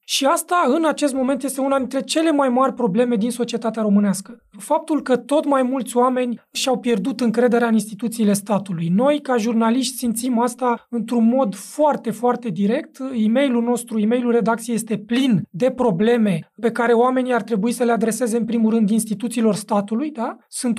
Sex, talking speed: male, 175 wpm